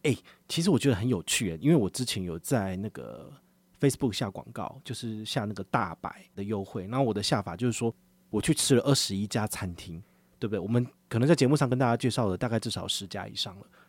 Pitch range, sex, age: 110-160 Hz, male, 30-49